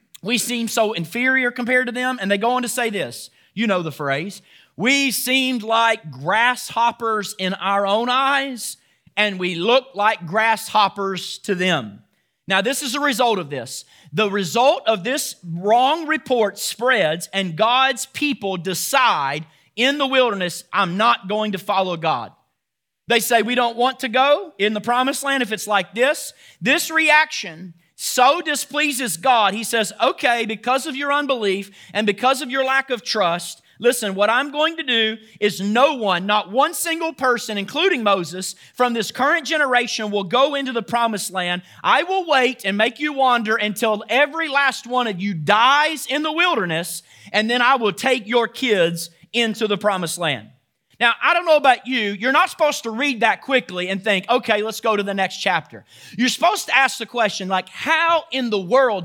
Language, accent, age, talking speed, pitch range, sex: English, American, 40-59, 185 wpm, 200-265 Hz, male